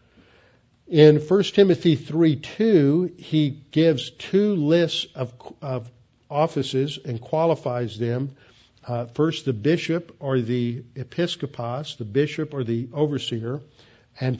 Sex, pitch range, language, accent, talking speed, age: male, 130-160 Hz, English, American, 115 wpm, 50-69